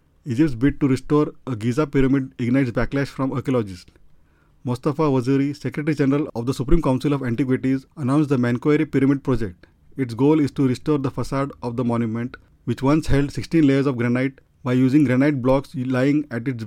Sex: male